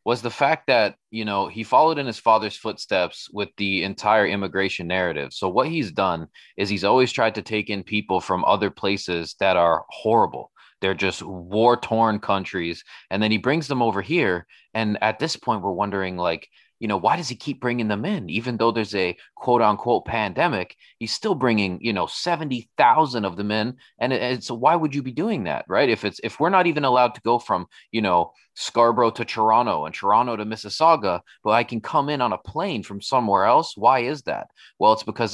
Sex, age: male, 30-49